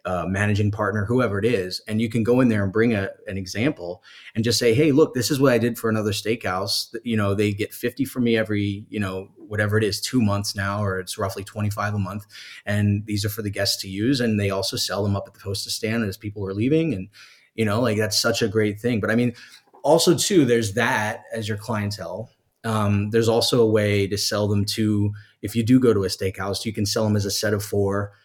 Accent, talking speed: American, 255 wpm